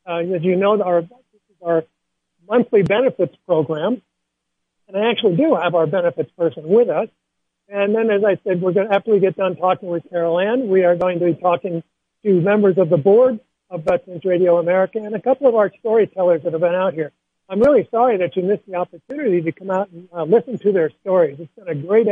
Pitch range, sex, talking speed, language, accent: 170-200 Hz, male, 225 wpm, English, American